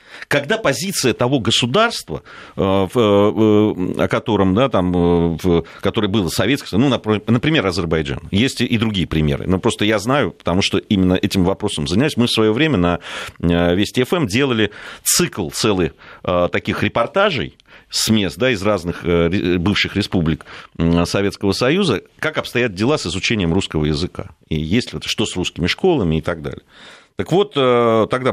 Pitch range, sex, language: 90-135 Hz, male, Russian